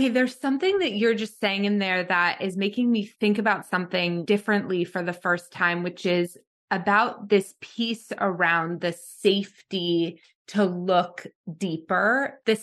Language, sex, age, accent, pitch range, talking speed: English, female, 20-39, American, 180-215 Hz, 155 wpm